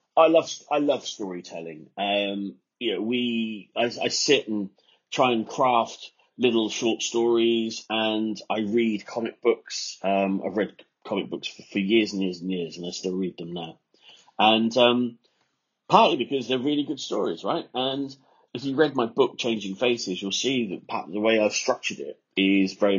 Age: 30-49